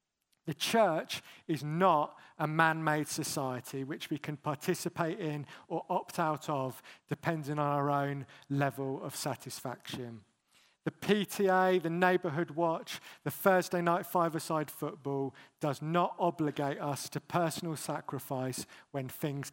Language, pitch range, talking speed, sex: English, 135-175 Hz, 130 wpm, male